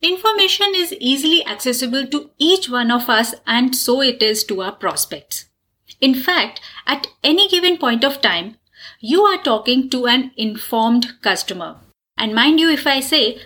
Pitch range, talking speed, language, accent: 225-320 Hz, 165 wpm, English, Indian